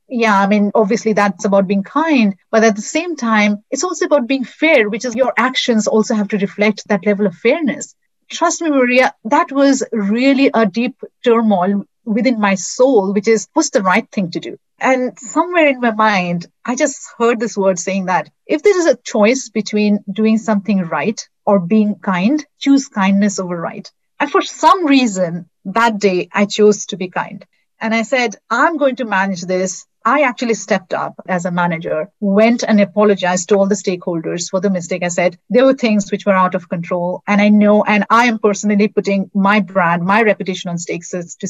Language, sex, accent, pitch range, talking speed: English, female, Indian, 190-240 Hz, 200 wpm